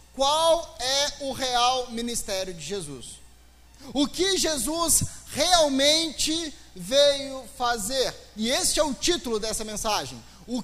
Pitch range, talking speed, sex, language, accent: 240-300 Hz, 120 wpm, male, Portuguese, Brazilian